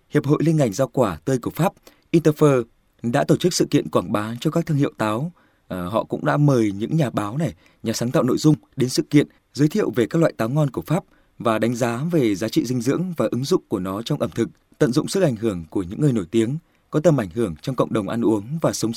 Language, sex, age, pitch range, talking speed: Vietnamese, male, 20-39, 115-160 Hz, 265 wpm